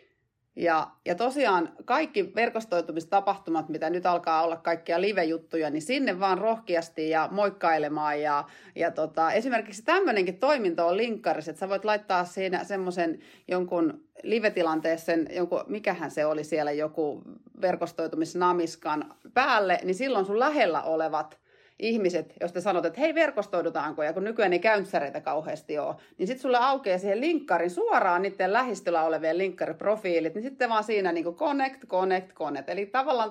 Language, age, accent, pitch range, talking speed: Finnish, 30-49, native, 165-225 Hz, 140 wpm